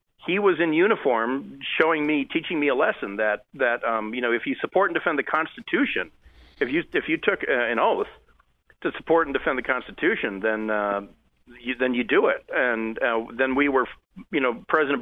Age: 50-69